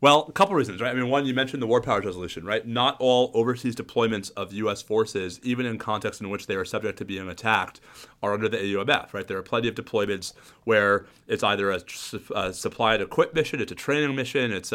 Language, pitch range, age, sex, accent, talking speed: English, 110-140 Hz, 30-49, male, American, 230 wpm